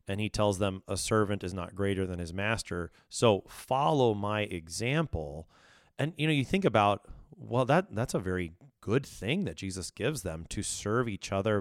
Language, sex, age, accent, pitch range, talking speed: English, male, 30-49, American, 95-120 Hz, 190 wpm